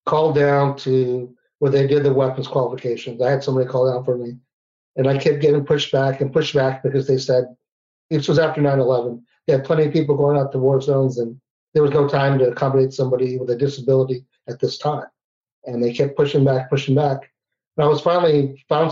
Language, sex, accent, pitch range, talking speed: English, male, American, 130-150 Hz, 215 wpm